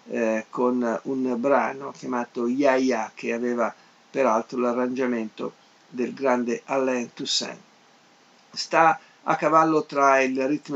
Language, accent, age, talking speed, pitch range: Italian, native, 50-69, 115 wpm, 120-145 Hz